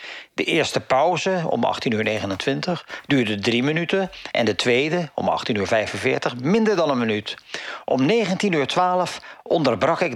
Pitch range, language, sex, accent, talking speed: 130-180 Hz, Dutch, male, Dutch, 155 wpm